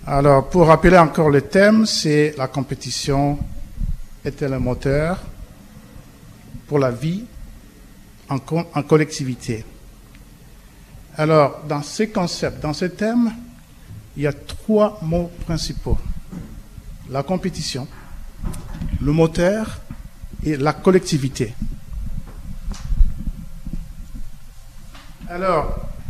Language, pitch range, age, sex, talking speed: French, 140-185 Hz, 50-69, male, 85 wpm